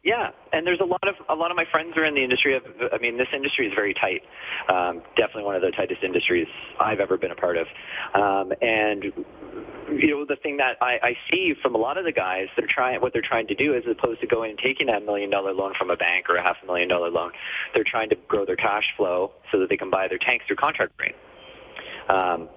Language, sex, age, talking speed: English, male, 30-49, 260 wpm